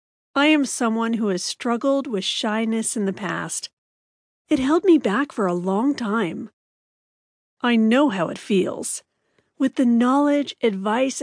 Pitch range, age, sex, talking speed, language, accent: 215-290 Hz, 40-59, female, 150 wpm, English, American